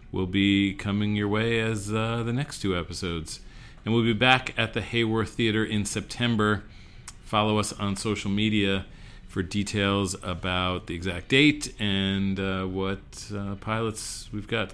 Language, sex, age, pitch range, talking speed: English, male, 40-59, 95-120 Hz, 160 wpm